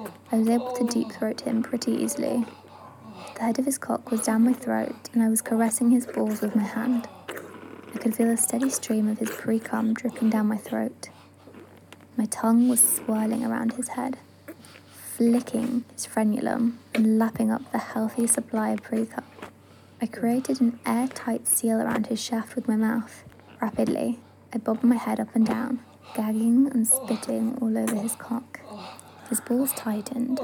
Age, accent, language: 20-39, British, English